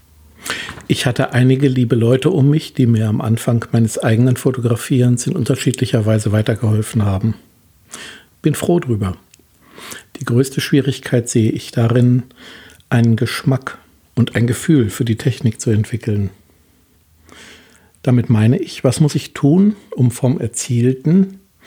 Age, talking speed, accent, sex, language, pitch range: 60-79, 135 wpm, German, male, German, 110-130 Hz